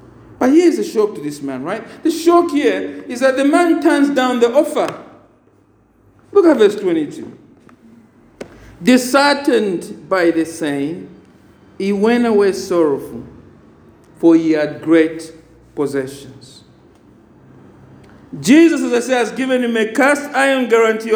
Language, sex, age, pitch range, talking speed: English, male, 50-69, 210-305 Hz, 135 wpm